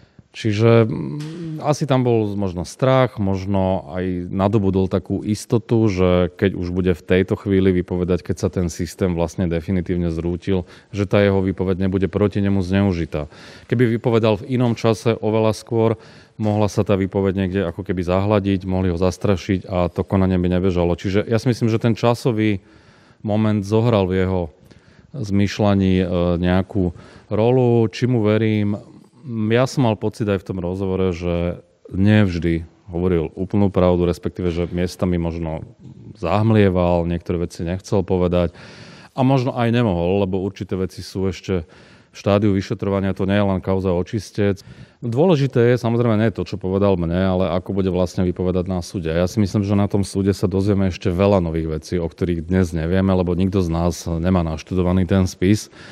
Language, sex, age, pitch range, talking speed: Slovak, male, 30-49, 90-105 Hz, 165 wpm